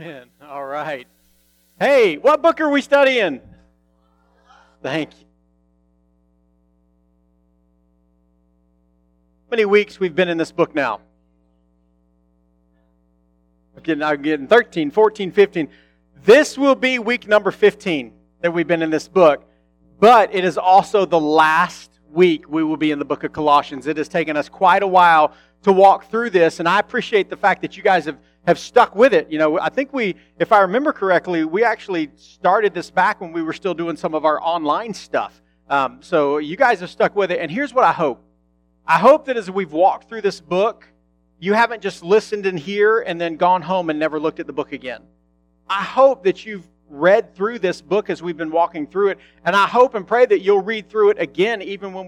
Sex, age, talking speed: male, 40-59, 200 wpm